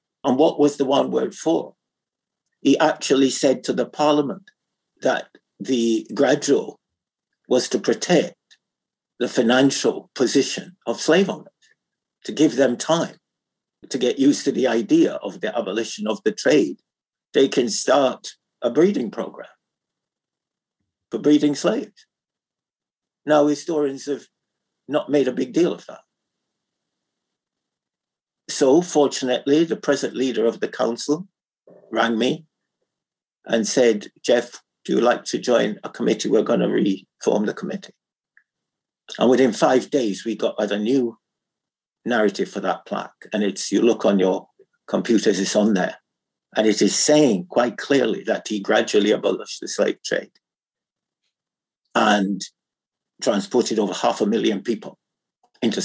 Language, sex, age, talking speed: English, male, 50-69, 140 wpm